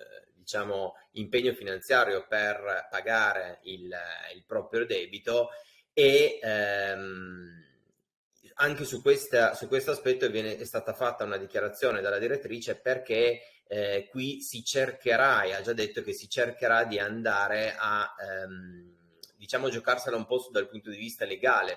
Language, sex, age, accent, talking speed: Italian, male, 30-49, native, 130 wpm